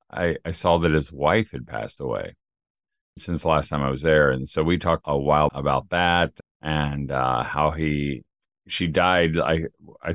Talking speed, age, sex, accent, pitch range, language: 190 wpm, 40-59, male, American, 75-90 Hz, English